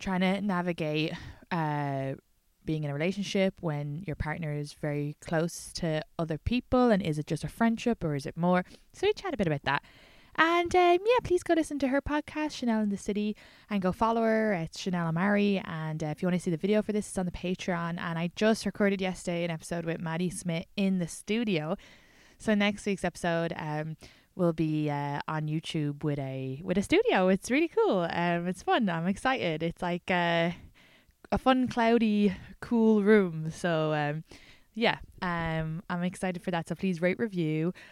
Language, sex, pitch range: English, female, 155-220 Hz